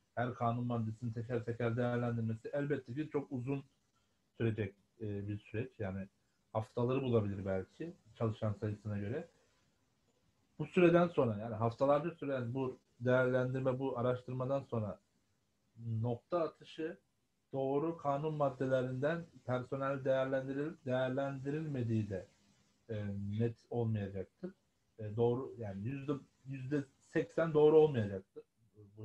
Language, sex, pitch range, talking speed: Turkish, male, 110-140 Hz, 100 wpm